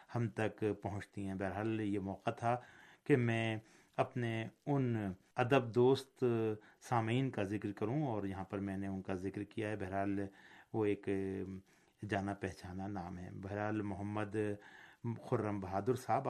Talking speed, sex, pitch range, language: 145 wpm, male, 100-115 Hz, Urdu